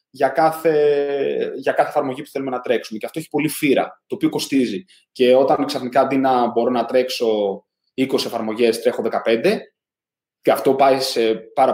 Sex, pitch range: male, 130-185 Hz